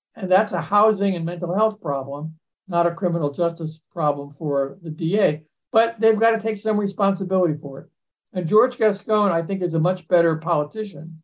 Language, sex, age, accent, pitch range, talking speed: English, male, 60-79, American, 155-200 Hz, 185 wpm